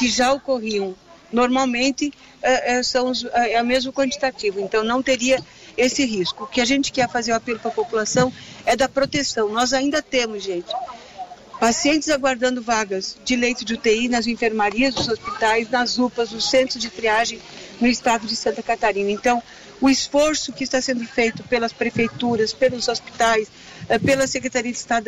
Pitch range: 235-270 Hz